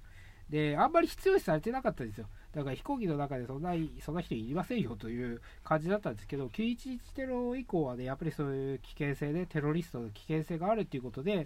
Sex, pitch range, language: male, 105-170 Hz, Japanese